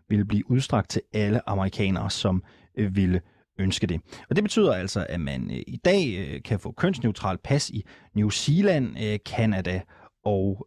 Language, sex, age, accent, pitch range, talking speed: Danish, male, 30-49, native, 105-150 Hz, 175 wpm